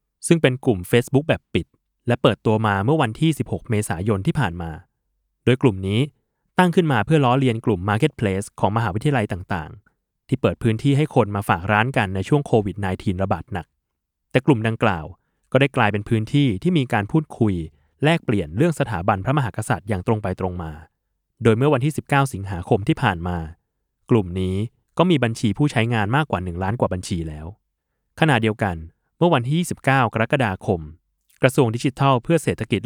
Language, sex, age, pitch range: Thai, male, 20-39, 95-135 Hz